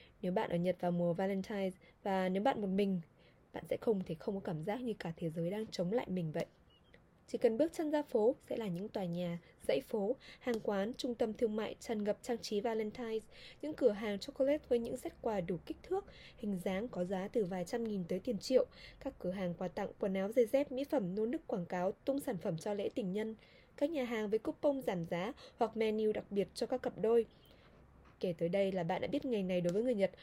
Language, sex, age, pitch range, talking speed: Vietnamese, female, 20-39, 185-245 Hz, 250 wpm